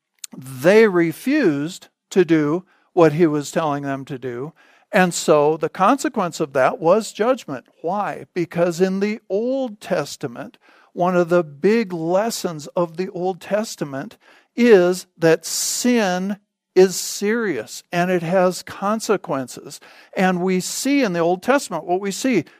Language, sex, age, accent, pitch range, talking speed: English, male, 50-69, American, 160-200 Hz, 140 wpm